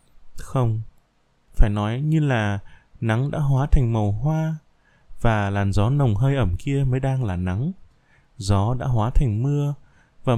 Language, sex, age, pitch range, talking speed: Vietnamese, male, 20-39, 105-150 Hz, 160 wpm